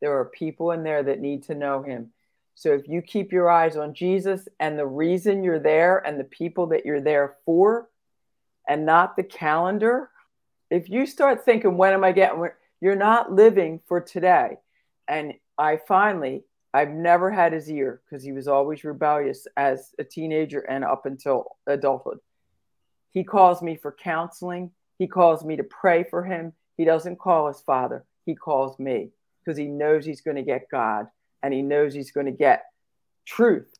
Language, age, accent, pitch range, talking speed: English, 50-69, American, 145-180 Hz, 185 wpm